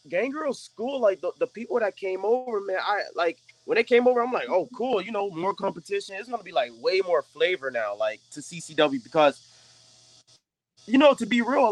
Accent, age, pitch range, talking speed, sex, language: American, 20-39, 160-230 Hz, 220 wpm, male, English